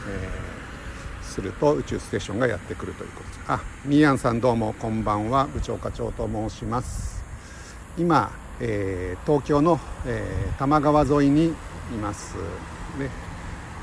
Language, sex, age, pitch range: Japanese, male, 60-79, 95-125 Hz